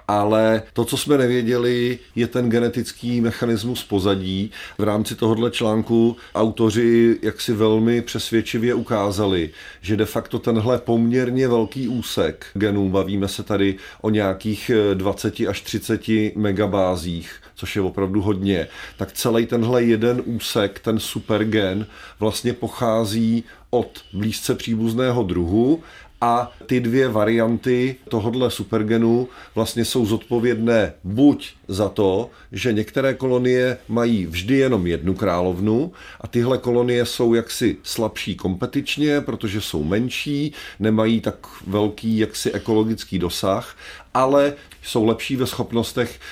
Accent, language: native, Czech